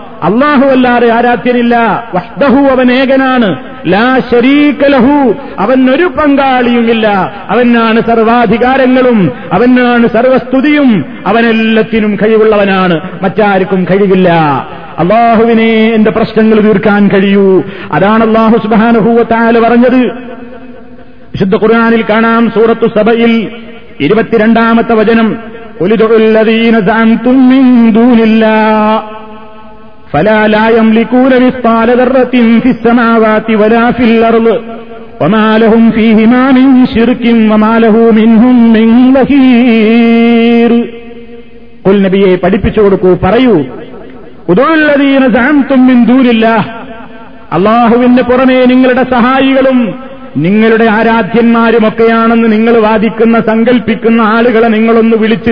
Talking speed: 60 wpm